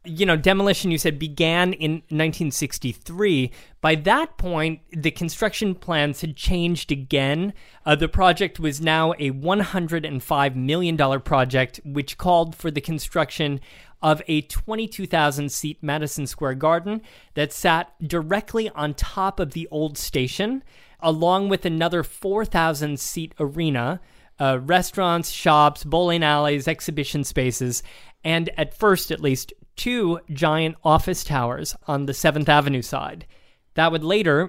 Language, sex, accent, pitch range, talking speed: English, male, American, 145-180 Hz, 130 wpm